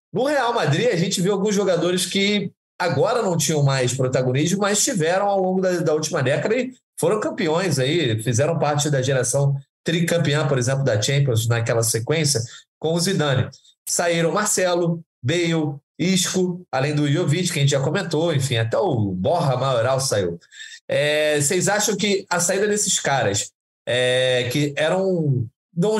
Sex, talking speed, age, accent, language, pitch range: male, 160 wpm, 20-39, Brazilian, Portuguese, 140-180 Hz